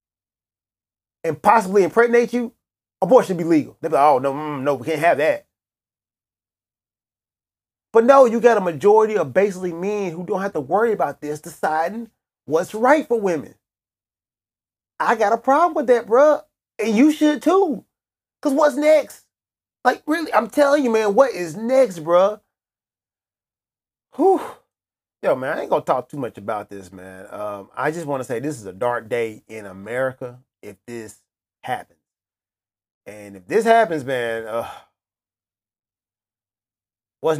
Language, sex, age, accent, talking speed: English, male, 30-49, American, 155 wpm